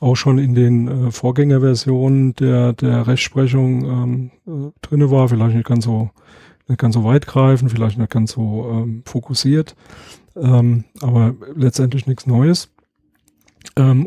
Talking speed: 145 wpm